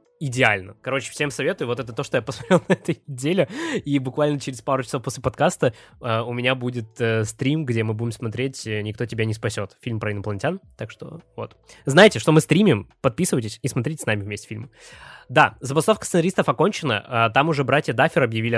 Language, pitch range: Russian, 115-150 Hz